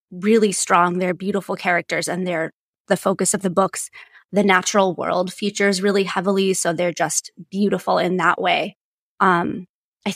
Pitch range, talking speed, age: 180-205 Hz, 160 wpm, 20-39